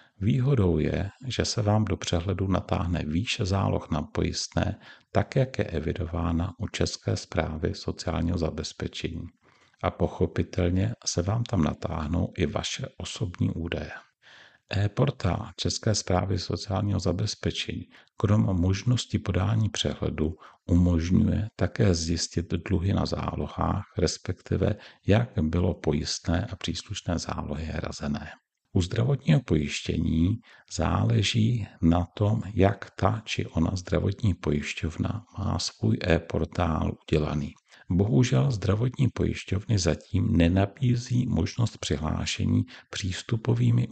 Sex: male